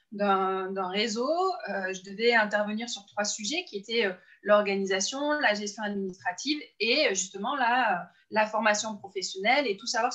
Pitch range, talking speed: 200-255 Hz, 165 wpm